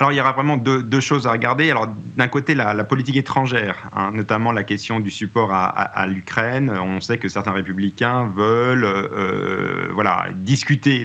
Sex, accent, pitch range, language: male, French, 110-135 Hz, French